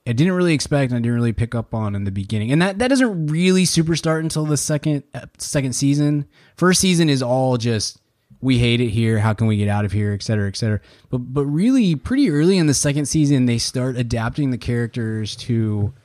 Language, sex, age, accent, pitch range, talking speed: English, male, 20-39, American, 105-135 Hz, 230 wpm